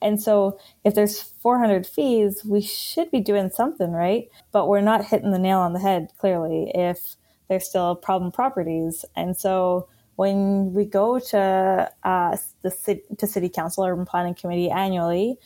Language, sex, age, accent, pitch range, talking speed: English, female, 20-39, American, 175-200 Hz, 160 wpm